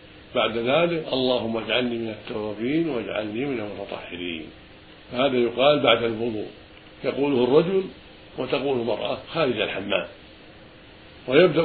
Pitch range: 105-130 Hz